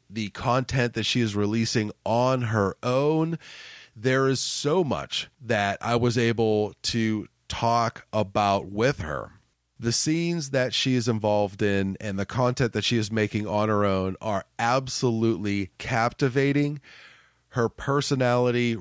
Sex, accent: male, American